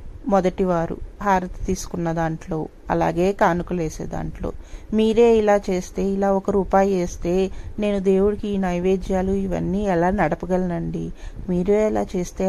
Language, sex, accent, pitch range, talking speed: Telugu, female, native, 180-225 Hz, 105 wpm